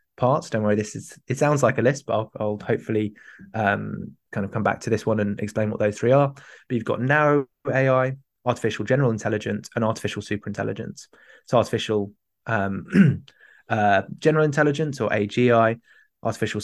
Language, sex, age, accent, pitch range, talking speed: English, male, 20-39, British, 105-130 Hz, 175 wpm